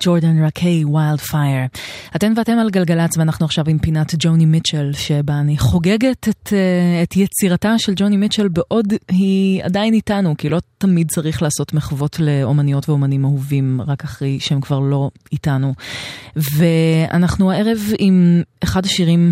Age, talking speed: 20-39, 145 wpm